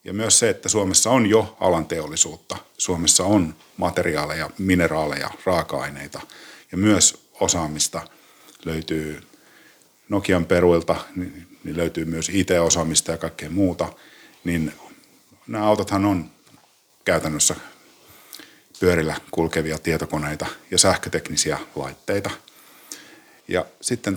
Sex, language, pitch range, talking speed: male, Finnish, 80-100 Hz, 95 wpm